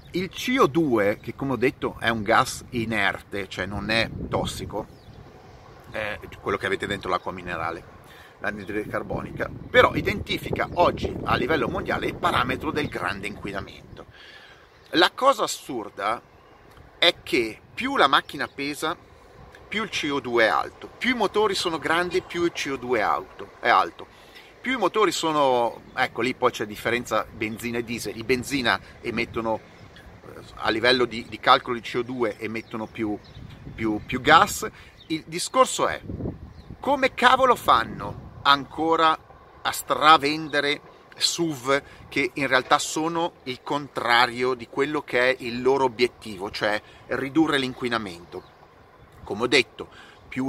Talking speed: 135 wpm